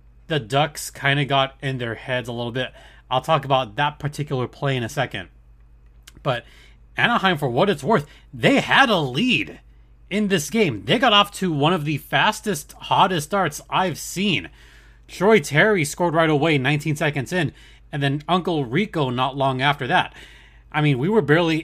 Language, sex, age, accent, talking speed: English, male, 30-49, American, 185 wpm